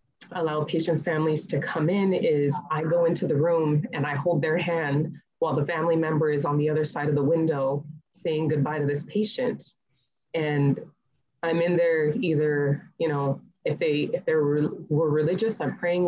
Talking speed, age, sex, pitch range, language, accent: 185 wpm, 20-39, female, 150-175 Hz, English, American